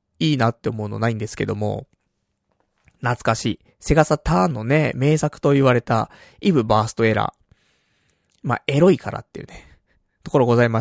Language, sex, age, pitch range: Japanese, male, 20-39, 115-175 Hz